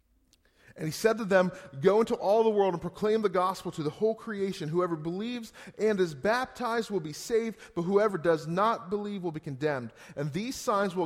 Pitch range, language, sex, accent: 155-215 Hz, English, male, American